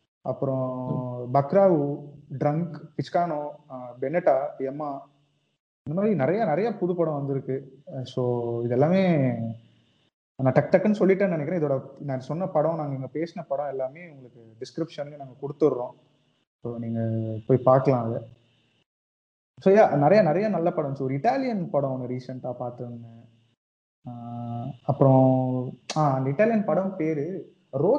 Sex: male